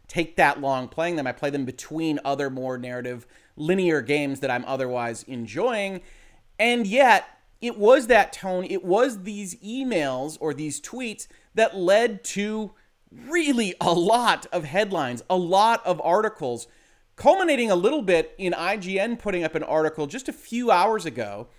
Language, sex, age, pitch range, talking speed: English, male, 30-49, 145-210 Hz, 160 wpm